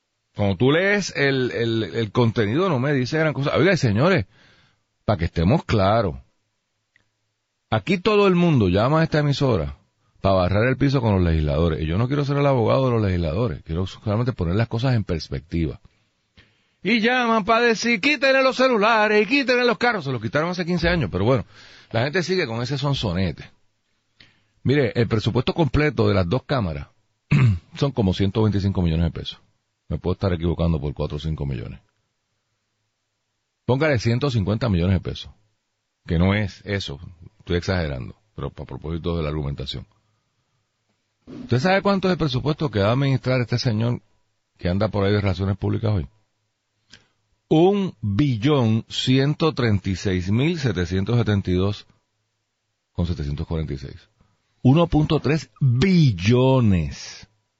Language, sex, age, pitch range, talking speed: Spanish, male, 40-59, 95-140 Hz, 145 wpm